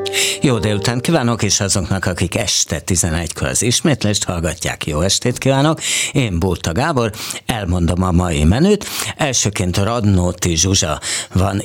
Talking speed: 130 wpm